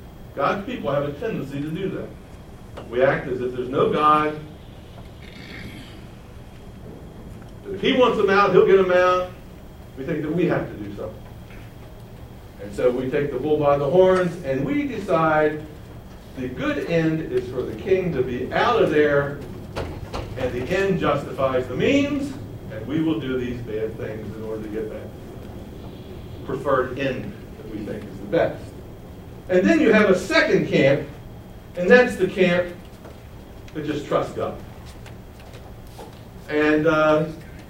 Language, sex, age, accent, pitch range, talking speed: English, male, 60-79, American, 125-175 Hz, 160 wpm